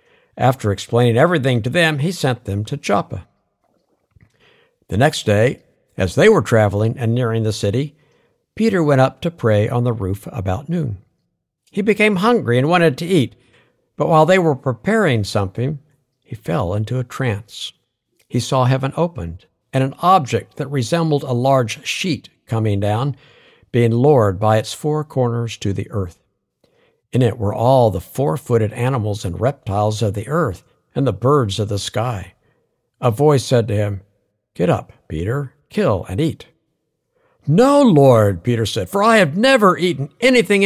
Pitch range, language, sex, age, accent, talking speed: 110-155 Hz, English, male, 60-79, American, 165 wpm